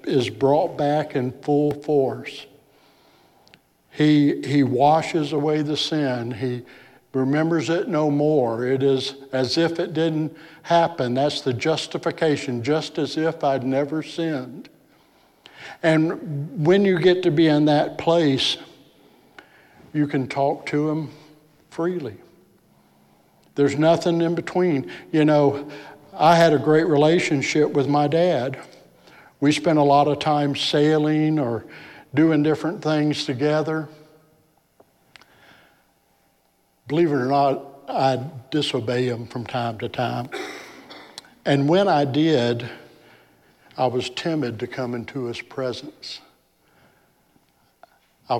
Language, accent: English, American